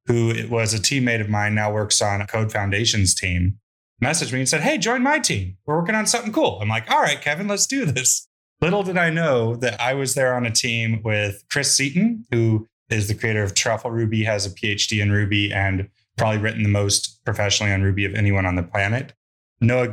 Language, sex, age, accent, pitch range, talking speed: English, male, 20-39, American, 100-125 Hz, 225 wpm